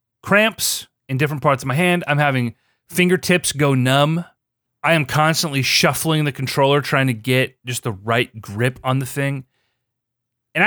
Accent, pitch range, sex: American, 120-180 Hz, male